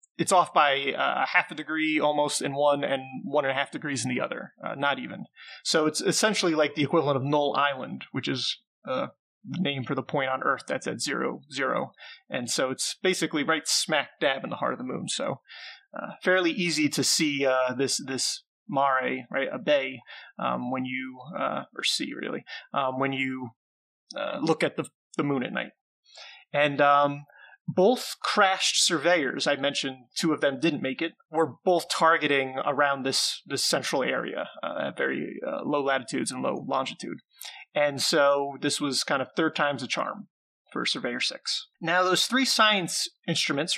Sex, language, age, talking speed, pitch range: male, English, 30-49, 185 wpm, 135-175 Hz